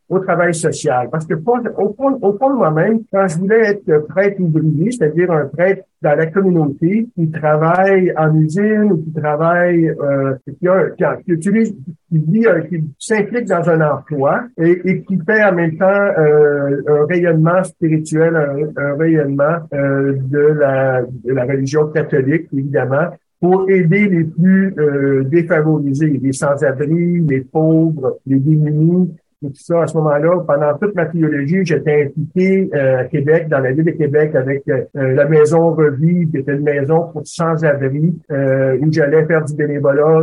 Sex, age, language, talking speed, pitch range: male, 60-79, French, 165 wpm, 145-175 Hz